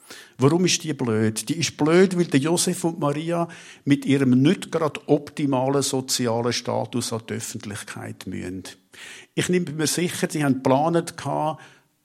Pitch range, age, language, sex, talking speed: 115-145 Hz, 50-69, German, male, 140 wpm